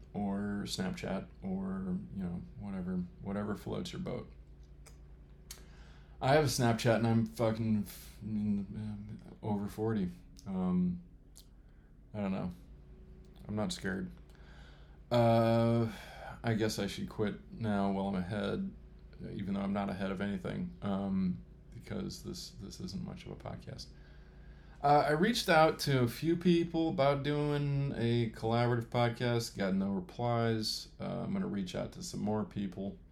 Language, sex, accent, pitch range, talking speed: English, male, American, 90-125 Hz, 140 wpm